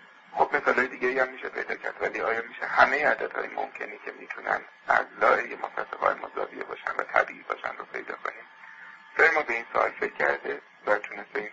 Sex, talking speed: male, 195 wpm